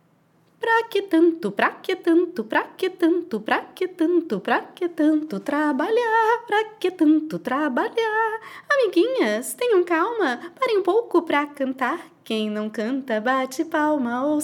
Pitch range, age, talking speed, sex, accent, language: 210-335 Hz, 20-39, 145 wpm, female, Brazilian, Portuguese